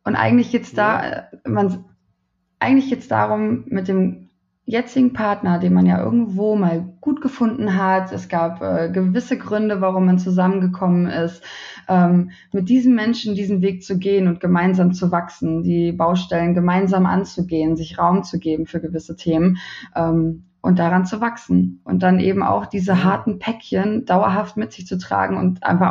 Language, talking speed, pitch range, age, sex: German, 165 wpm, 175-210 Hz, 20-39, female